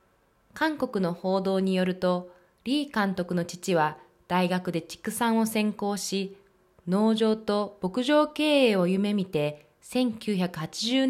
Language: Japanese